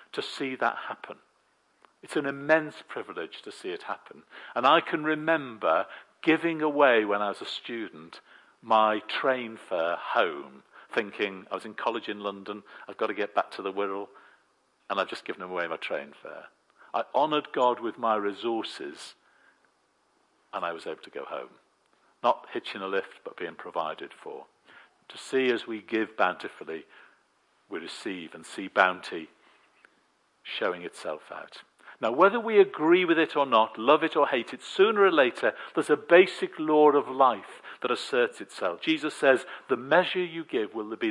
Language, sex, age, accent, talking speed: English, male, 50-69, British, 170 wpm